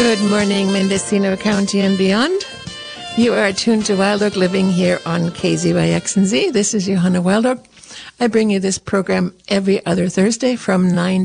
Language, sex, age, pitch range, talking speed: English, female, 60-79, 180-225 Hz, 155 wpm